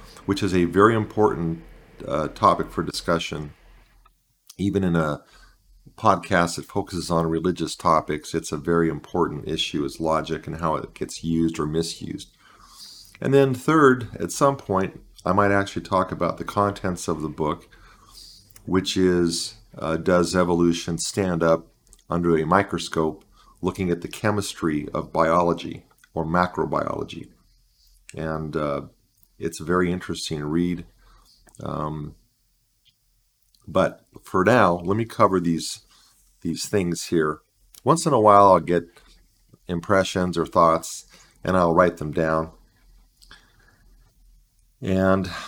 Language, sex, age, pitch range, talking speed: English, male, 50-69, 85-100 Hz, 130 wpm